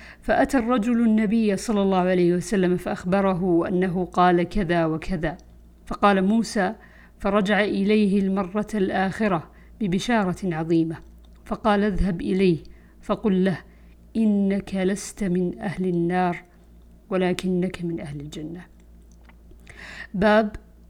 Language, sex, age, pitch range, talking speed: Arabic, female, 50-69, 180-215 Hz, 100 wpm